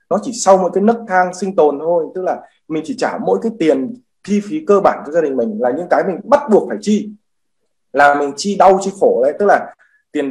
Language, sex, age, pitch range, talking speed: Vietnamese, male, 20-39, 155-210 Hz, 255 wpm